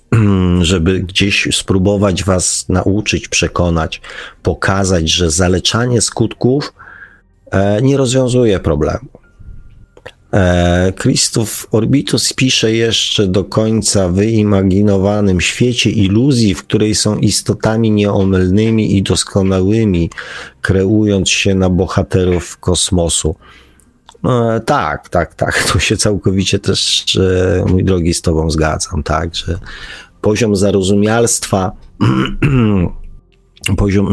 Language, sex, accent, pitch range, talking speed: Polish, male, native, 90-105 Hz, 95 wpm